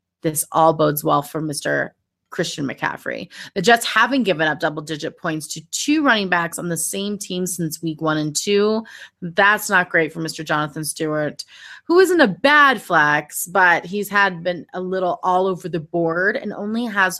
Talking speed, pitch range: 185 wpm, 160-210 Hz